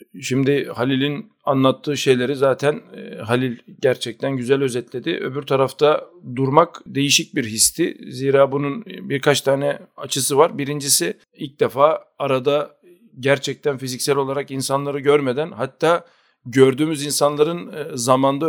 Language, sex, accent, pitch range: Turkish, male, native, 125-145 Hz